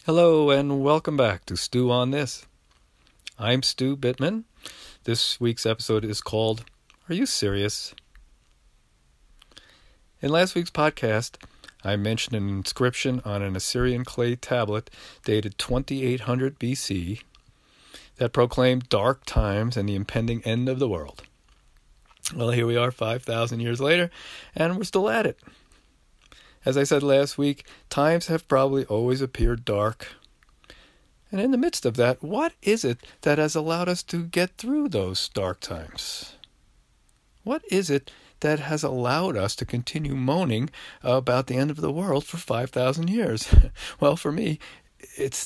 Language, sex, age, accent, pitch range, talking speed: English, male, 50-69, American, 110-150 Hz, 145 wpm